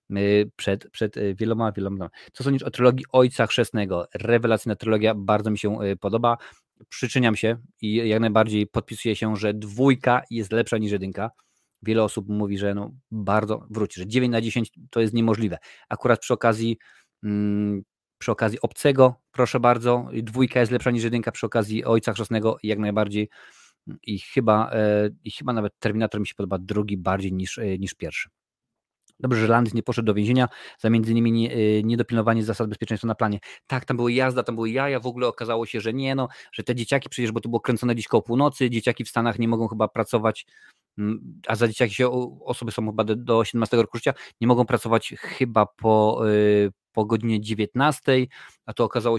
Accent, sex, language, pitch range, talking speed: native, male, Polish, 110-120 Hz, 180 wpm